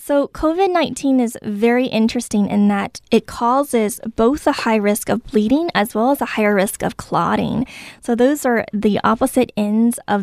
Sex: female